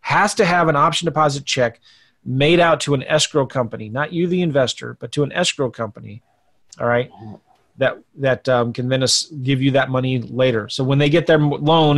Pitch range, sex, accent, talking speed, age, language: 130-170 Hz, male, American, 200 wpm, 30-49, English